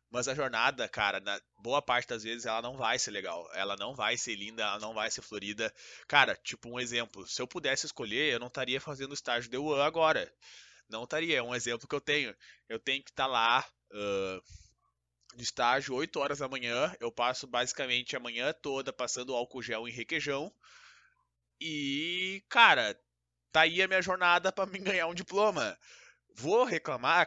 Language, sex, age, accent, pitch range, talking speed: Portuguese, male, 20-39, Brazilian, 125-170 Hz, 190 wpm